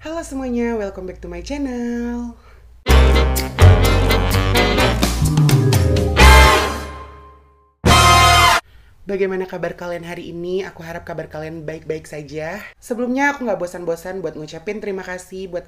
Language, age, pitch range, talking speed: Indonesian, 20-39, 145-195 Hz, 105 wpm